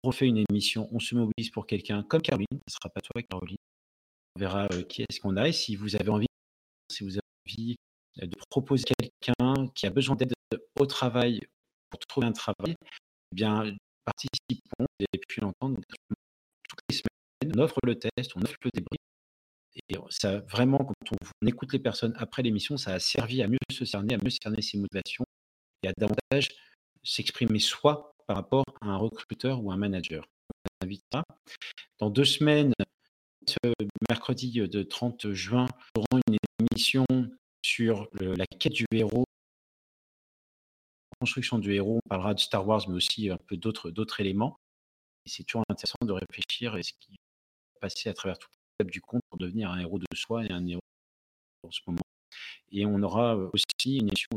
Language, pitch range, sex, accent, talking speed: French, 95-125 Hz, male, French, 190 wpm